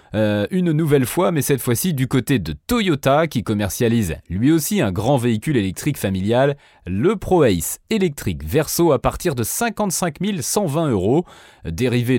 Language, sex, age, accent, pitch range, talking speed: French, male, 30-49, French, 110-175 Hz, 155 wpm